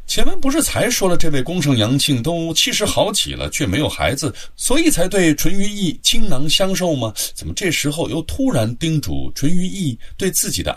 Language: Chinese